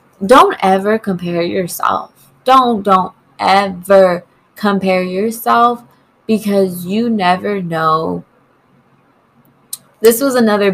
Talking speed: 90 wpm